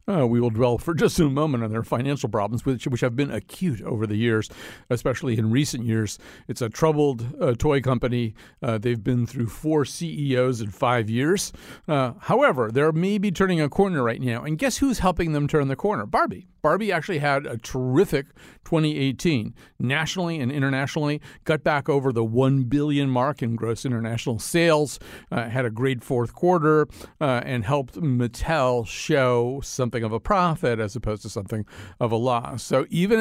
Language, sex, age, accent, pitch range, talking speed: English, male, 50-69, American, 120-160 Hz, 185 wpm